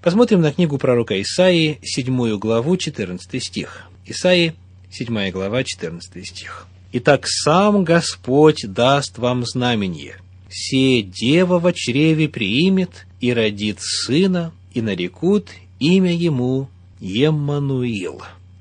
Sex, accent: male, native